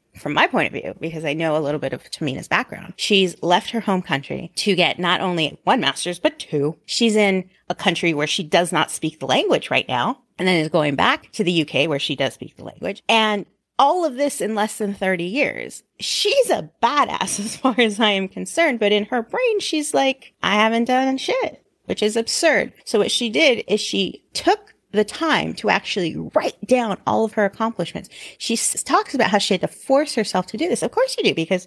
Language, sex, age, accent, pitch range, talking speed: English, female, 30-49, American, 185-260 Hz, 225 wpm